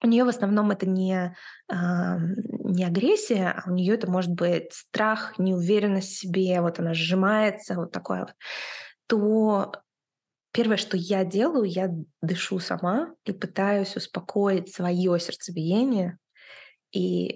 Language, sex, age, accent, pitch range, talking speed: Russian, female, 20-39, native, 185-235 Hz, 130 wpm